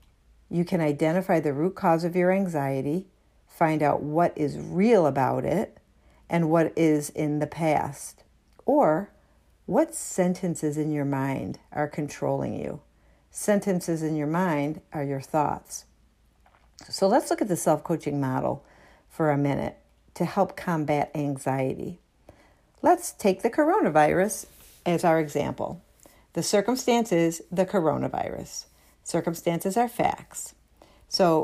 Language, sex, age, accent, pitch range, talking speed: English, female, 50-69, American, 150-185 Hz, 130 wpm